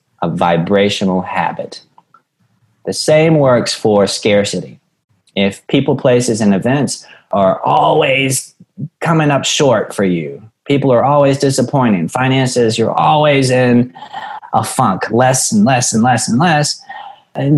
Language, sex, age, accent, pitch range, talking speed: English, male, 30-49, American, 110-155 Hz, 130 wpm